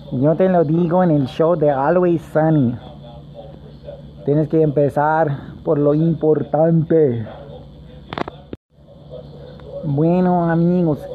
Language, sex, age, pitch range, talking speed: English, male, 30-49, 140-175 Hz, 95 wpm